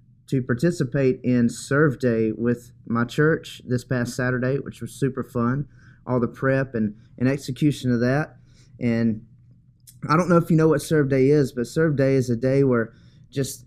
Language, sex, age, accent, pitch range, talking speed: English, male, 30-49, American, 125-145 Hz, 185 wpm